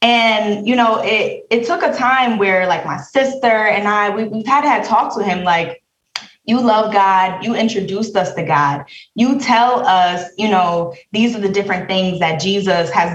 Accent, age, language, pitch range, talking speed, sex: American, 20-39, English, 175-225 Hz, 195 wpm, female